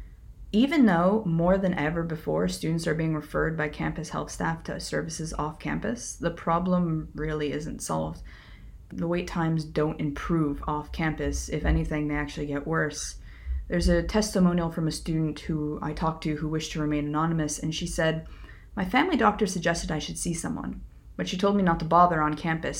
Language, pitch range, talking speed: English, 150-170 Hz, 180 wpm